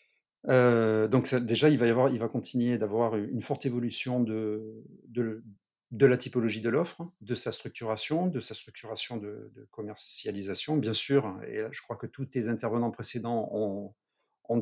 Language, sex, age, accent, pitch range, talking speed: French, male, 40-59, French, 115-135 Hz, 180 wpm